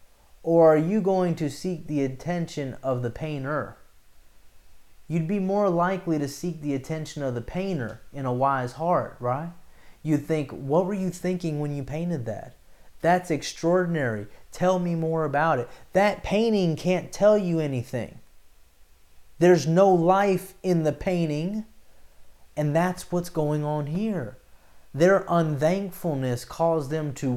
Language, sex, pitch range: English, male, 125-180 Hz